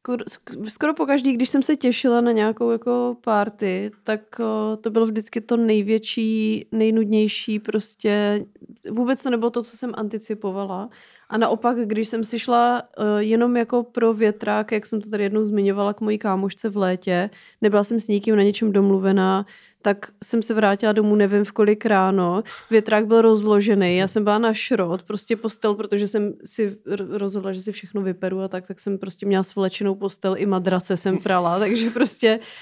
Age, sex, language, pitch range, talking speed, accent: 30-49, female, Czech, 200-230 Hz, 175 wpm, native